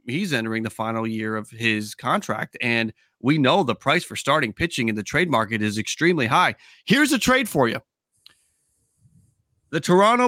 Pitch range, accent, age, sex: 125-190 Hz, American, 30-49, male